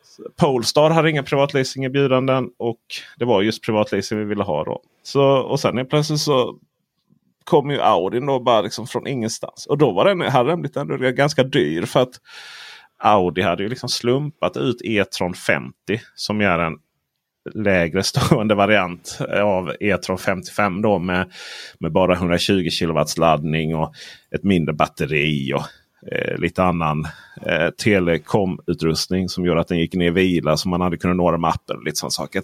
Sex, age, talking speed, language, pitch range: male, 30-49, 155 wpm, Swedish, 90-120 Hz